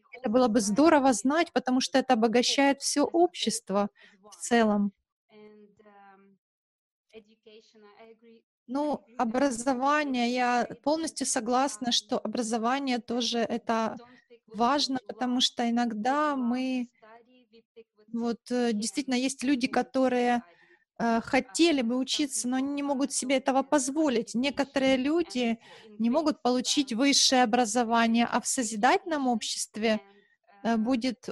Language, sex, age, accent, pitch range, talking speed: Russian, female, 30-49, native, 230-275 Hz, 105 wpm